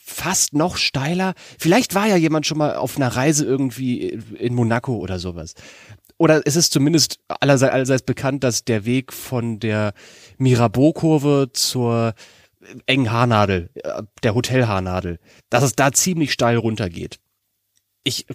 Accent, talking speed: German, 140 wpm